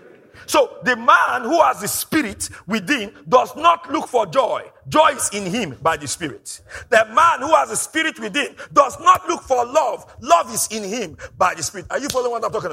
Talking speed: 210 wpm